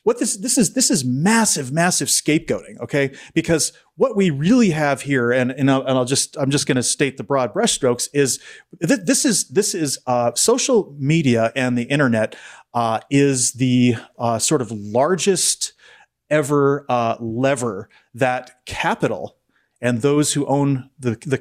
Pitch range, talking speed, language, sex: 125-165 Hz, 165 wpm, English, male